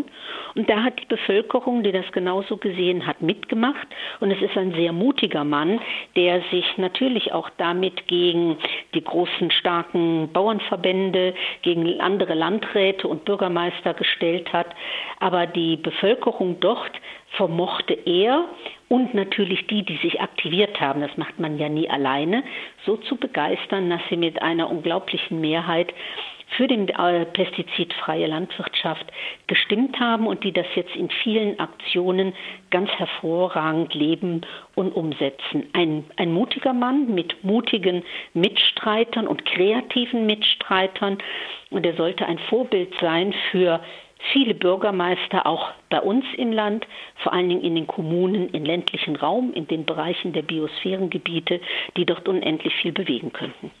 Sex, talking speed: female, 140 wpm